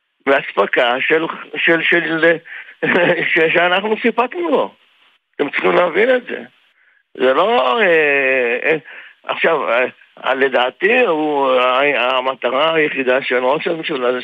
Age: 60-79